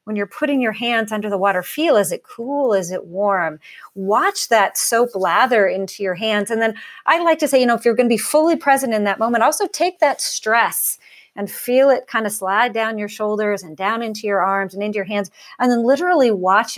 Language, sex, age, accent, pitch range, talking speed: English, female, 40-59, American, 200-265 Hz, 235 wpm